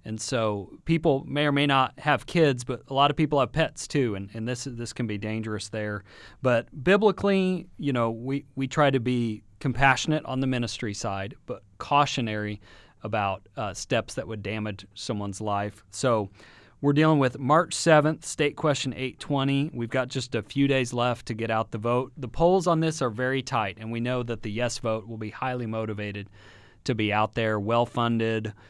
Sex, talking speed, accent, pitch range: male, 200 wpm, American, 105-135 Hz